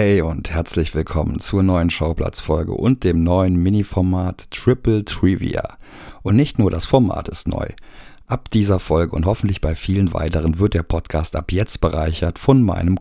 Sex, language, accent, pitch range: male, German, German, 90-115 Hz